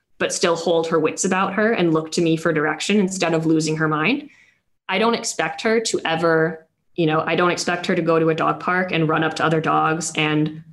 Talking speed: 240 wpm